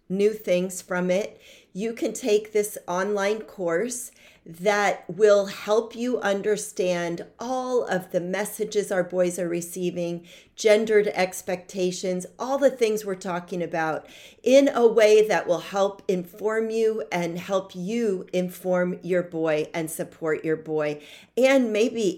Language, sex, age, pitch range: English, female, 40-59, 170-210 Hz